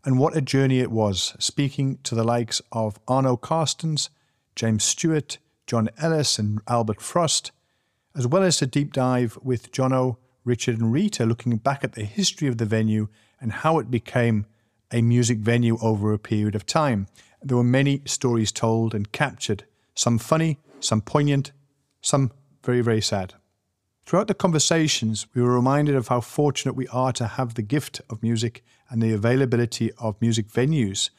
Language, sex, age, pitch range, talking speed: English, male, 50-69, 110-140 Hz, 170 wpm